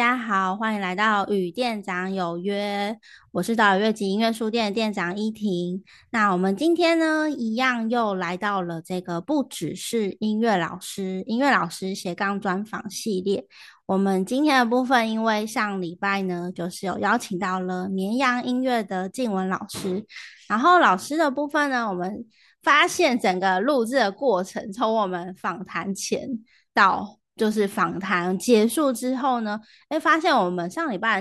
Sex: female